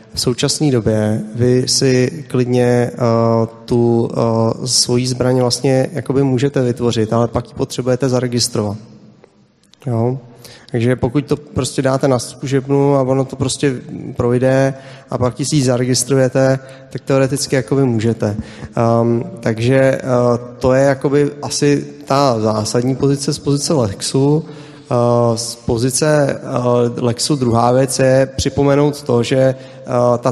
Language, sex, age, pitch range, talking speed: Czech, male, 30-49, 120-135 Hz, 130 wpm